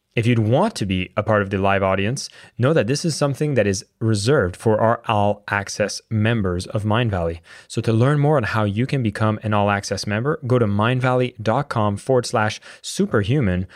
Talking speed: 195 wpm